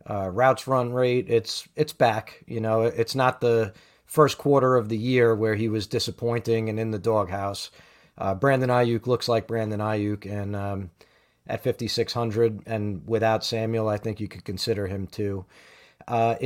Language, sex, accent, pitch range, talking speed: English, male, American, 110-130 Hz, 170 wpm